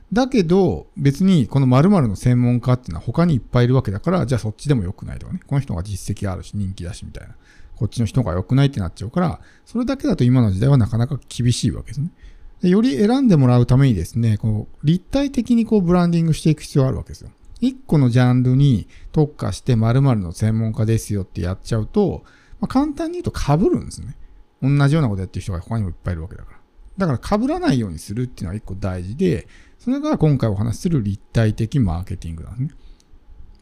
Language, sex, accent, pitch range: Japanese, male, native, 100-155 Hz